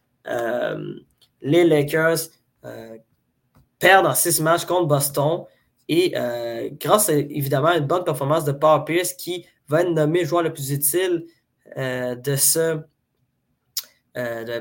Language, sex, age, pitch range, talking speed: French, male, 20-39, 135-175 Hz, 145 wpm